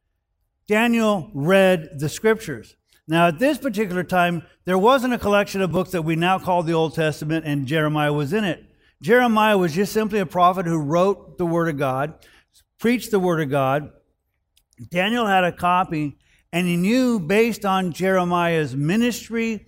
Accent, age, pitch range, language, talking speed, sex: American, 50-69, 155-210 Hz, English, 170 wpm, male